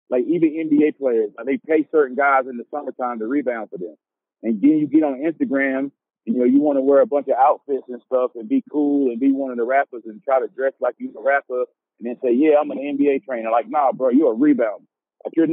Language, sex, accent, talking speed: English, male, American, 265 wpm